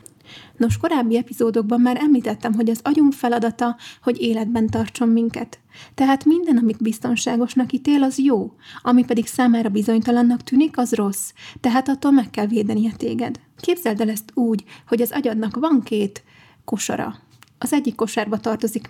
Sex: female